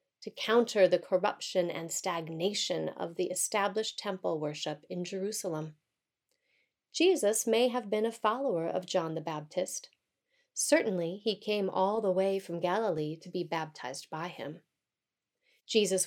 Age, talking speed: 30-49, 140 wpm